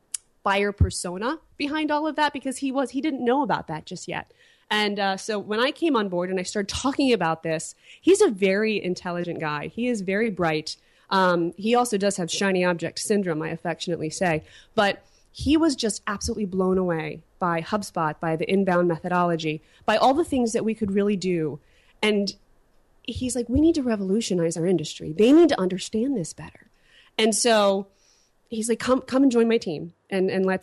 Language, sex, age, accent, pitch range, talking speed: English, female, 20-39, American, 175-220 Hz, 195 wpm